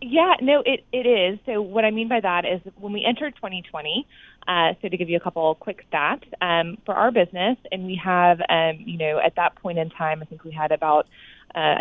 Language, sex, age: English, female, 20-39